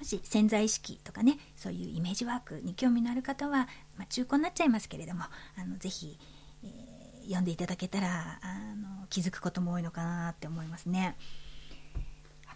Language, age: Japanese, 40-59